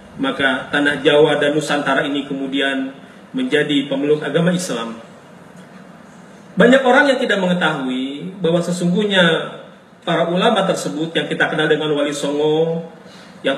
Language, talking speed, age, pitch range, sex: Indonesian, 125 wpm, 40-59, 155-185 Hz, male